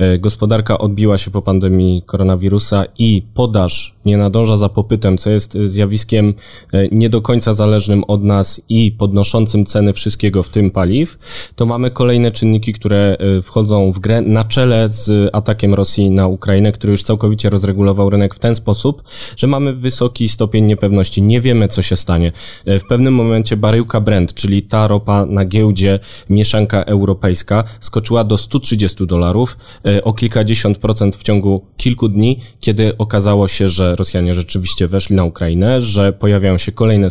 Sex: male